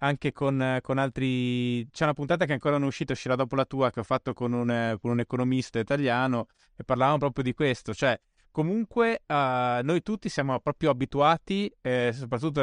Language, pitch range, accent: Italian, 120-150 Hz, native